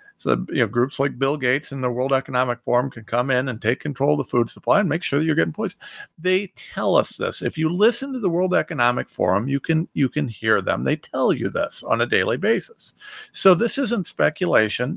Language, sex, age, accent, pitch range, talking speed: English, male, 50-69, American, 130-185 Hz, 235 wpm